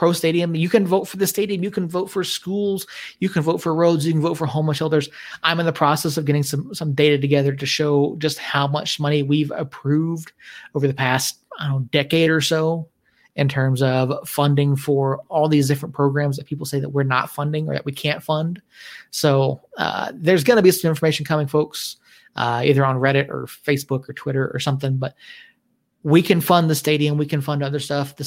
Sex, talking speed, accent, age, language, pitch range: male, 215 wpm, American, 30-49, English, 140-165 Hz